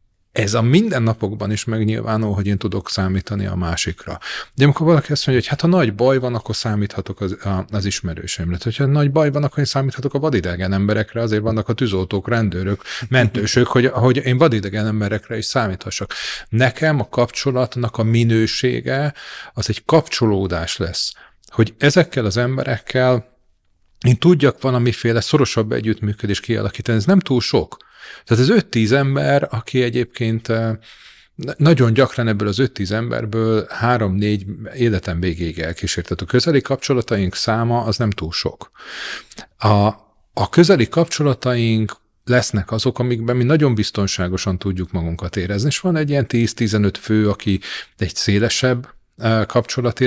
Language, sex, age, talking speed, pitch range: Hungarian, male, 40-59, 145 wpm, 105-125 Hz